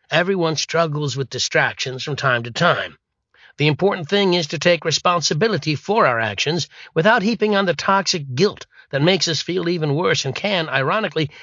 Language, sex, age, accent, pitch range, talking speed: English, male, 60-79, American, 140-175 Hz, 175 wpm